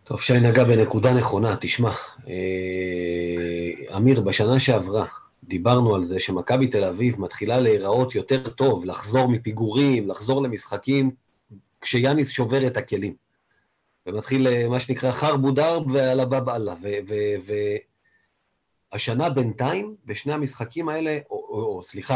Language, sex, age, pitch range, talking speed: Hebrew, male, 30-49, 115-150 Hz, 125 wpm